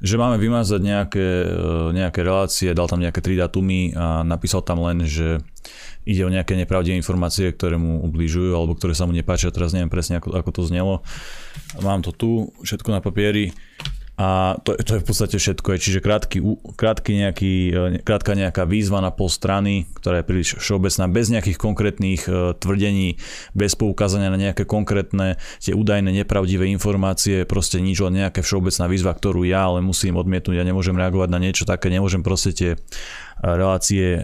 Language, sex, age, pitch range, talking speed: Slovak, male, 20-39, 90-100 Hz, 170 wpm